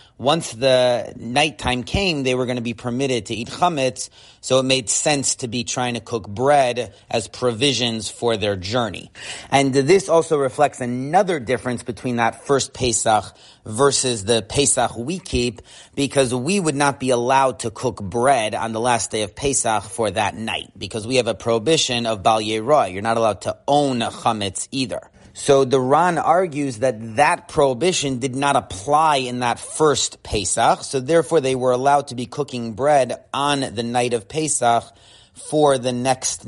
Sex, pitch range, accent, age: male, 115-135 Hz, American, 30-49